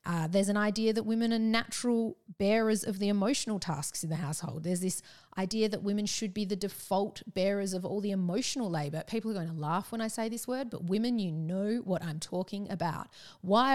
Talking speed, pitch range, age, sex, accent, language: 220 wpm, 165-205 Hz, 30-49, female, Australian, English